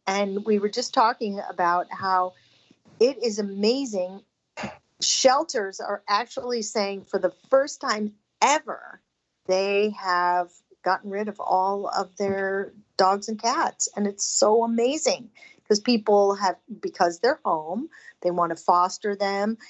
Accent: American